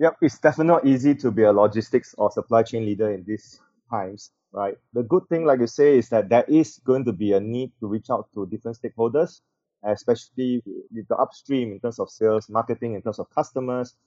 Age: 20-39